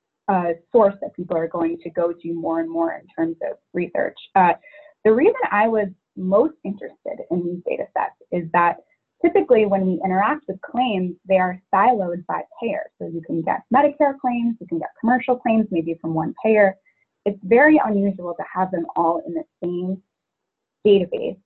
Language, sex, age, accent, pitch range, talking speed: English, female, 20-39, American, 175-245 Hz, 185 wpm